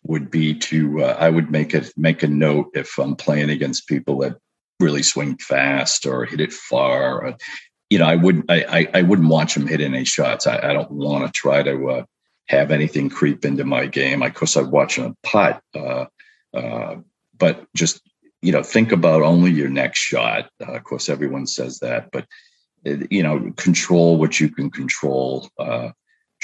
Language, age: English, 50-69